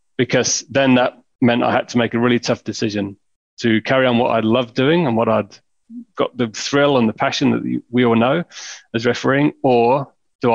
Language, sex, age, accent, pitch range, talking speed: English, male, 30-49, British, 110-120 Hz, 205 wpm